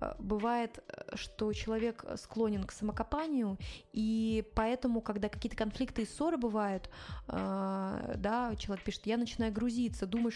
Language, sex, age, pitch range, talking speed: Russian, female, 20-39, 205-235 Hz, 120 wpm